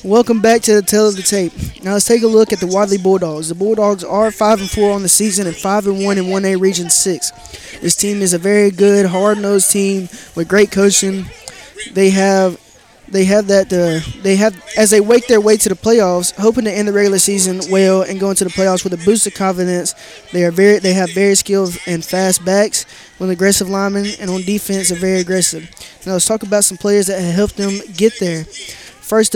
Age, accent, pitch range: 20-39, American, 185-210 Hz